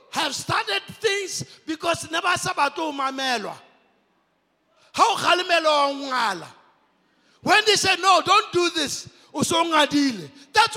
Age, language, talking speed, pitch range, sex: 50-69, English, 65 wpm, 280-390 Hz, male